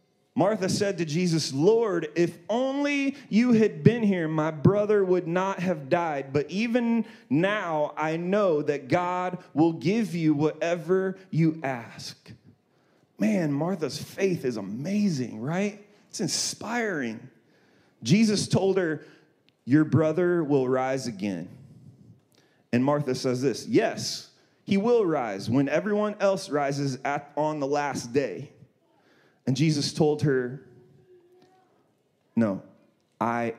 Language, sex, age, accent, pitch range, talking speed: English, male, 30-49, American, 130-180 Hz, 120 wpm